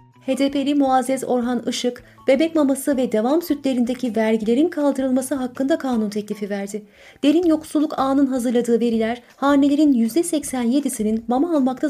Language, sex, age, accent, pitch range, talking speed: Turkish, female, 30-49, native, 225-280 Hz, 120 wpm